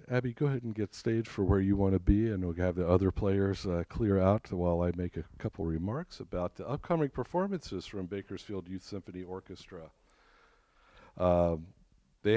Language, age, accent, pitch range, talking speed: English, 50-69, American, 90-115 Hz, 185 wpm